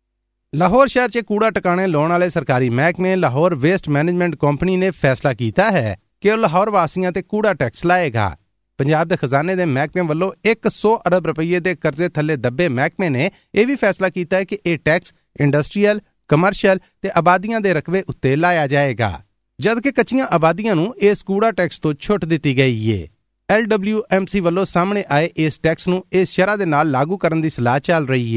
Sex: male